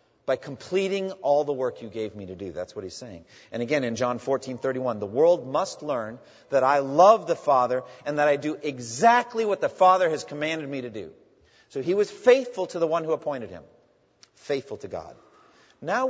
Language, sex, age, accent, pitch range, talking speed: English, male, 40-59, American, 140-185 Hz, 210 wpm